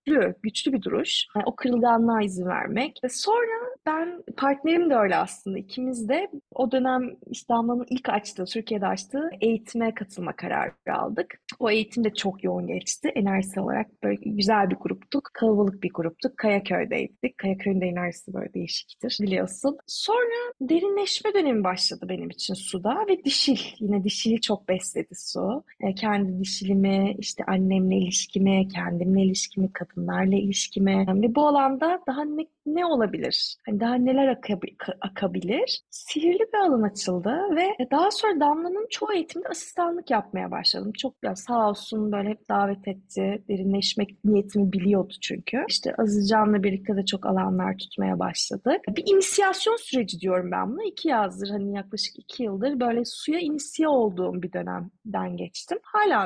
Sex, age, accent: female, 30-49, native